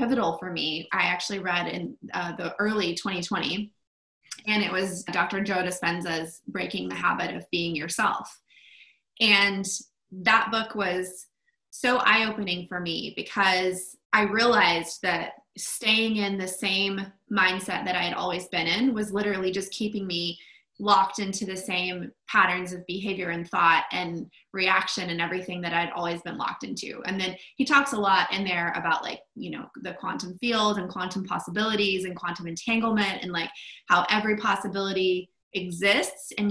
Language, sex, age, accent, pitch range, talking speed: English, female, 20-39, American, 180-215 Hz, 160 wpm